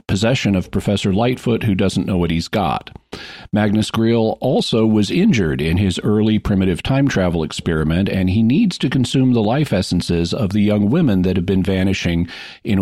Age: 50-69